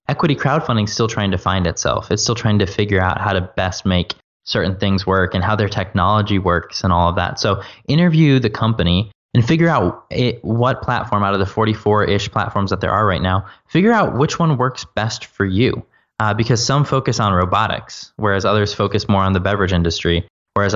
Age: 20-39